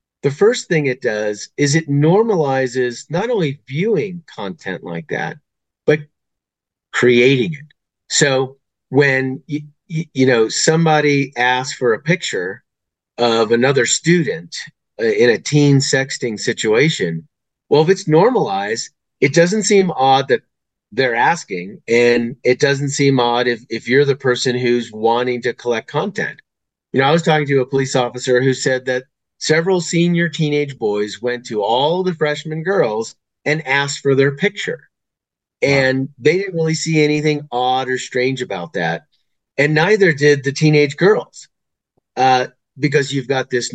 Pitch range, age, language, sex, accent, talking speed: 120-150 Hz, 40-59, English, male, American, 150 wpm